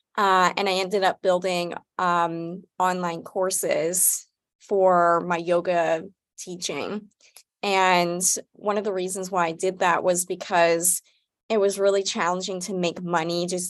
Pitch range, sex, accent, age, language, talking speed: 175-200 Hz, female, American, 20-39, English, 140 wpm